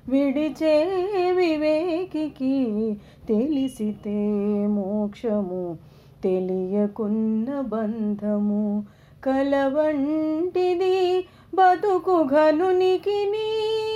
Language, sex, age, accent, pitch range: Telugu, female, 30-49, native, 225-360 Hz